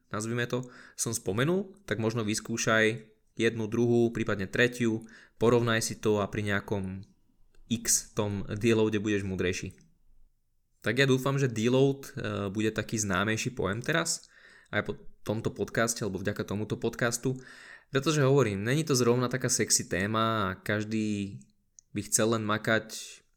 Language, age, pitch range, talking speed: Slovak, 20-39, 105-115 Hz, 140 wpm